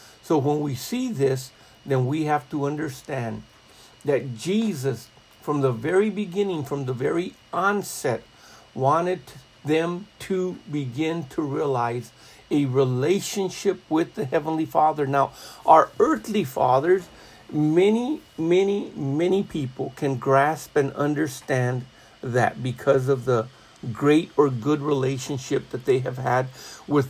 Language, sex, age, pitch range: English, male, 50-69, 135-175 Hz